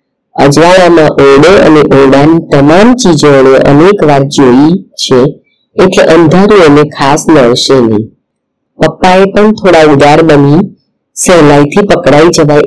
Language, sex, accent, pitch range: Gujarati, female, native, 140-195 Hz